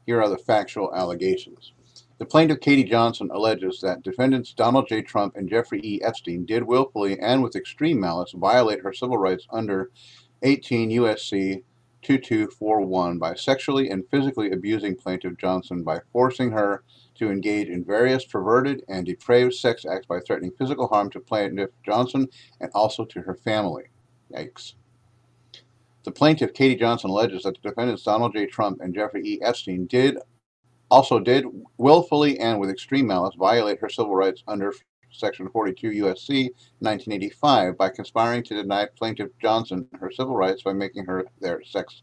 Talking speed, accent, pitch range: 155 wpm, American, 100-125 Hz